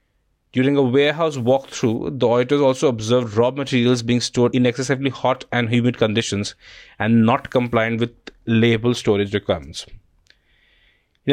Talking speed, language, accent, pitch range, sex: 140 wpm, English, Indian, 110-135 Hz, male